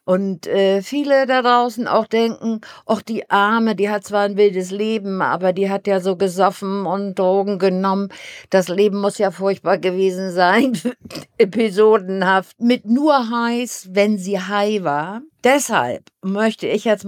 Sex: female